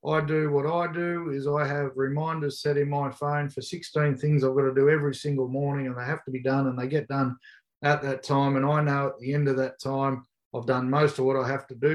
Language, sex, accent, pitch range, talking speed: English, male, Australian, 130-145 Hz, 270 wpm